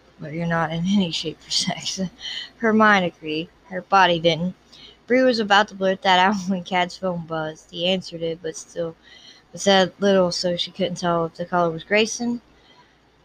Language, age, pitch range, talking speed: English, 20-39, 165-195 Hz, 190 wpm